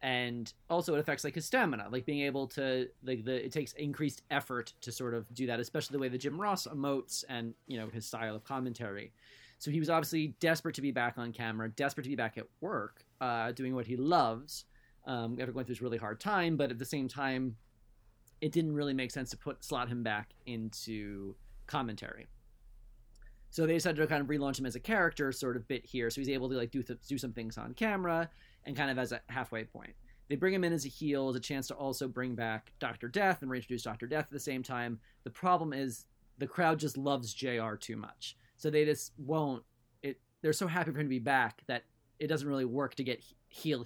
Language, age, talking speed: English, 30-49, 235 wpm